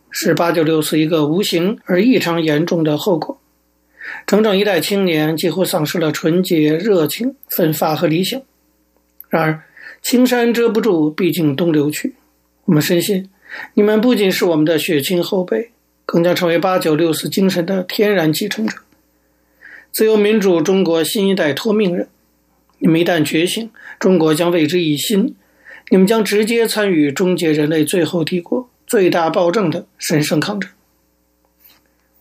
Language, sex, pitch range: Chinese, male, 155-200 Hz